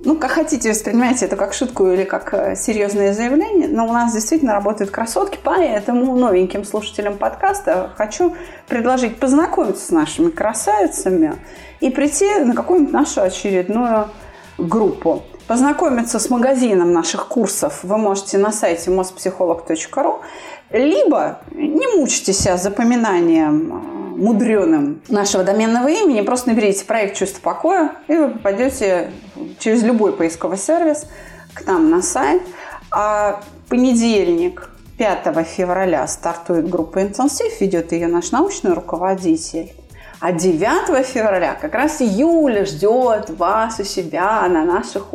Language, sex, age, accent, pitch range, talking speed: Russian, female, 30-49, native, 195-310 Hz, 125 wpm